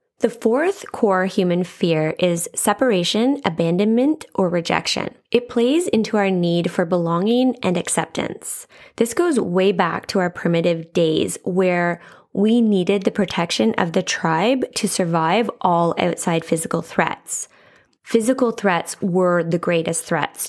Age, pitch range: 20-39, 175-215 Hz